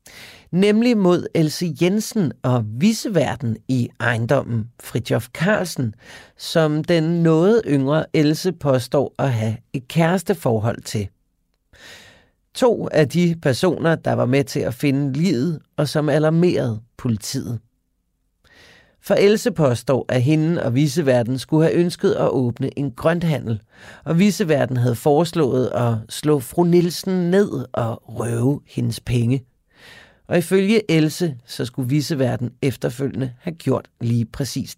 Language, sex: Danish, male